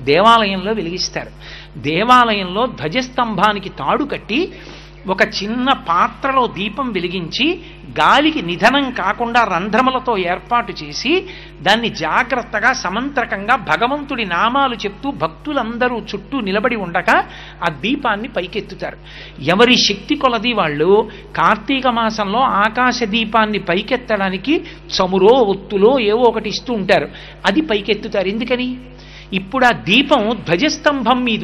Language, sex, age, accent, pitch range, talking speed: Telugu, male, 60-79, native, 200-260 Hz, 100 wpm